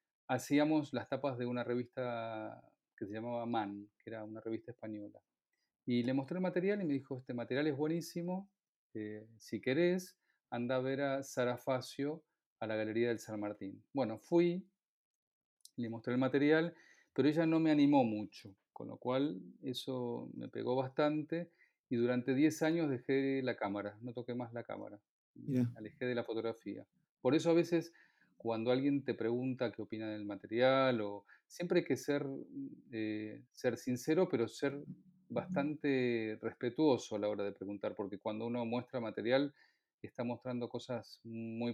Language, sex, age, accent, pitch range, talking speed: Spanish, male, 40-59, Argentinian, 115-145 Hz, 165 wpm